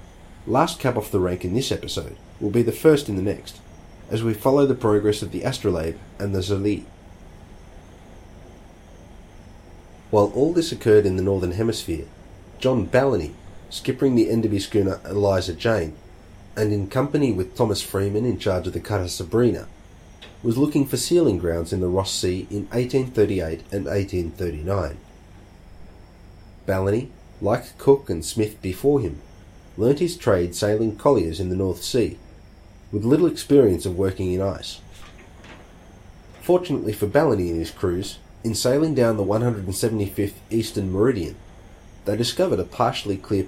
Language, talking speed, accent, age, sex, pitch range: English, 150 wpm, Australian, 30-49, male, 90-110 Hz